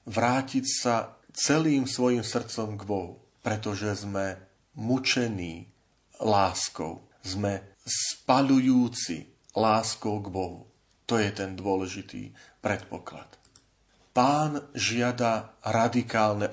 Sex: male